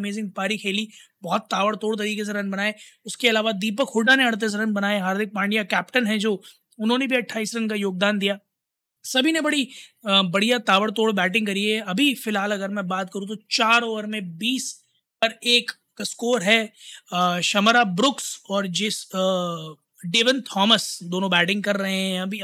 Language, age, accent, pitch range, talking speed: Hindi, 20-39, native, 195-235 Hz, 170 wpm